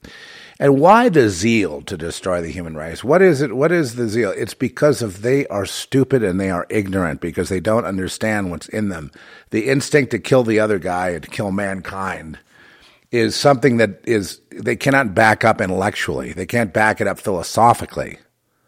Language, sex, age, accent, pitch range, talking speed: English, male, 50-69, American, 110-145 Hz, 190 wpm